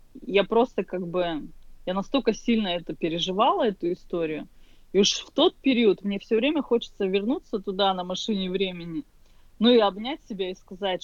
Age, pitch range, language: 20-39, 185-260 Hz, Russian